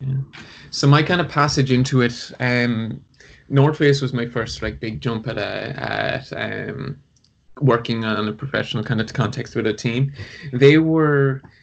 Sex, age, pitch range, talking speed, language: male, 20-39, 115-135 Hz, 170 wpm, English